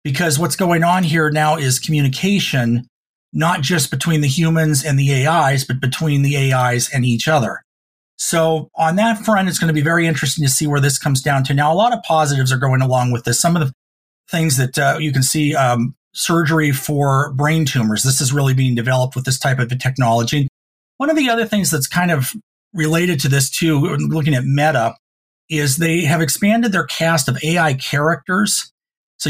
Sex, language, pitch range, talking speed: male, English, 130-160 Hz, 205 wpm